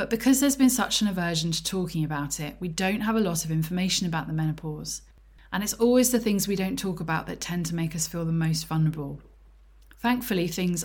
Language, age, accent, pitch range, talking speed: English, 20-39, British, 160-195 Hz, 225 wpm